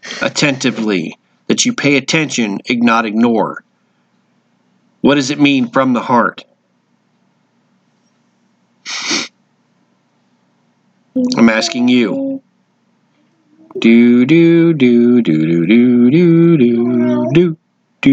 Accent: American